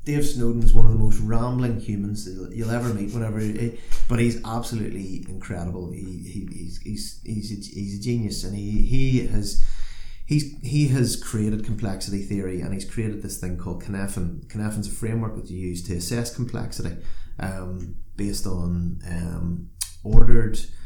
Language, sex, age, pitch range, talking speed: English, male, 30-49, 95-115 Hz, 170 wpm